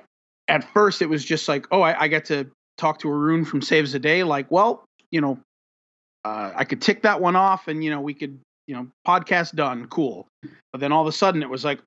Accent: American